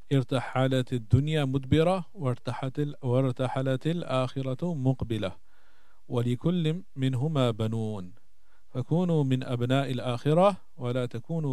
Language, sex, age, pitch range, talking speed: English, male, 40-59, 125-150 Hz, 50 wpm